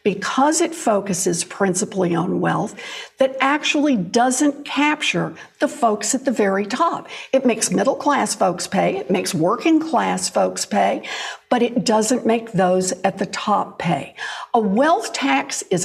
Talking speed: 155 wpm